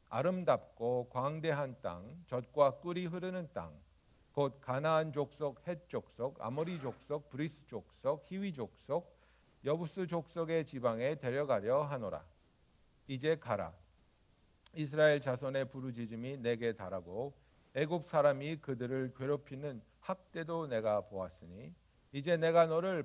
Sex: male